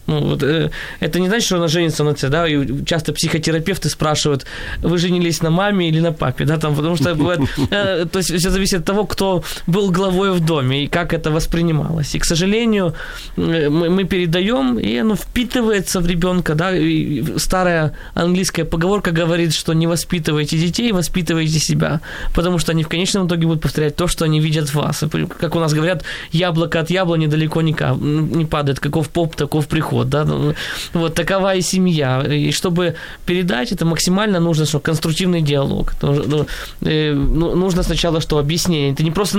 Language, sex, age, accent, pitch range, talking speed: Ukrainian, male, 20-39, native, 150-180 Hz, 170 wpm